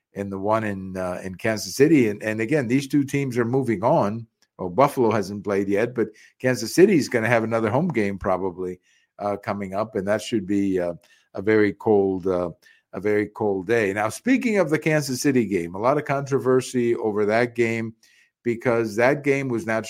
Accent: American